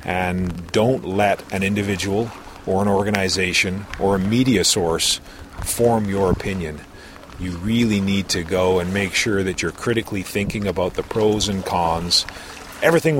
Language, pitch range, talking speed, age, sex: English, 90-120 Hz, 150 wpm, 40-59, male